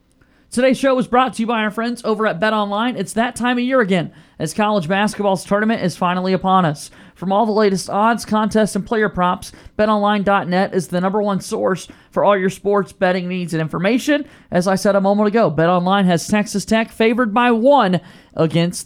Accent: American